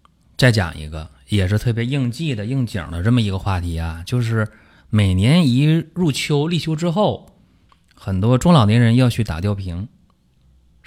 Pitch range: 90-120 Hz